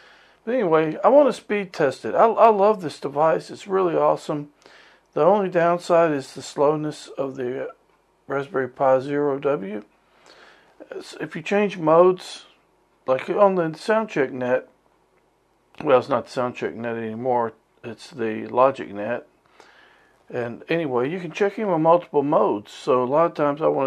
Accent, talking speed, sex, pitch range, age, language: American, 160 wpm, male, 125-170 Hz, 50-69, English